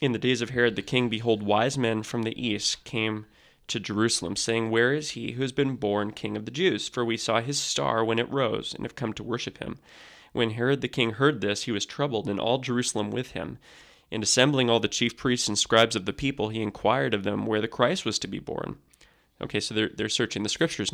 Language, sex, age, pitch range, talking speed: English, male, 20-39, 110-130 Hz, 245 wpm